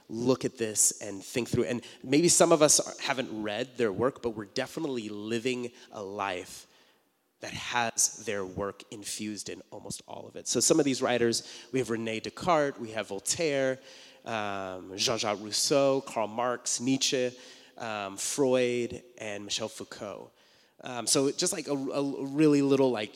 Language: English